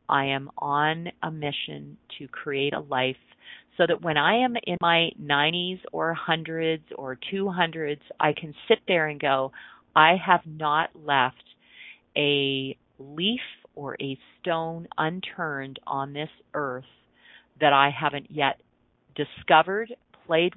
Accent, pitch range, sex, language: American, 145-190 Hz, female, English